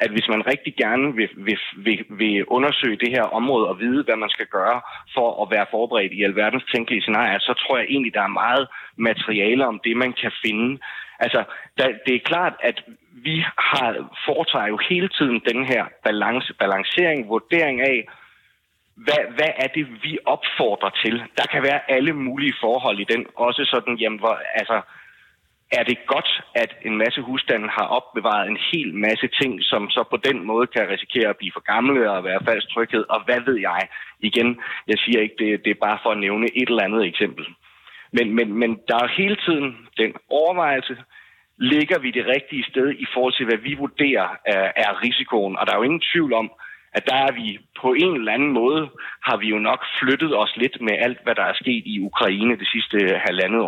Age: 30-49